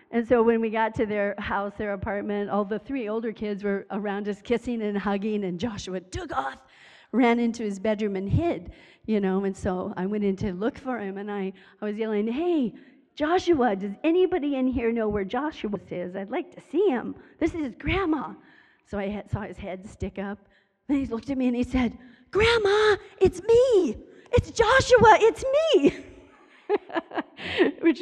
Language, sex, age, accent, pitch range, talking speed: English, female, 40-59, American, 205-280 Hz, 190 wpm